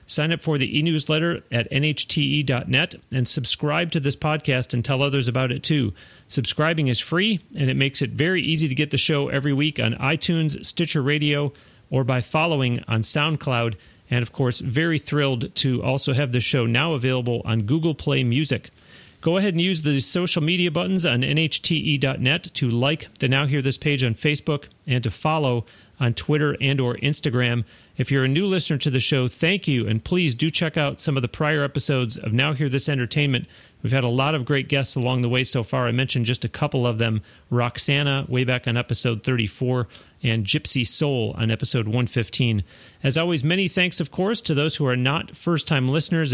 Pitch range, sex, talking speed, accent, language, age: 125-155 Hz, male, 200 wpm, American, English, 40-59